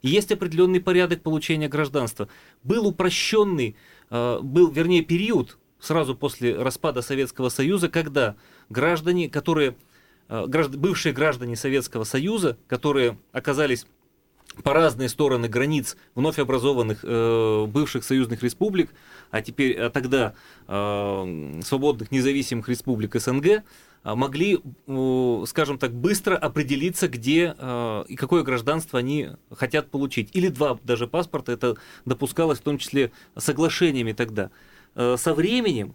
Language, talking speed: Russian, 110 wpm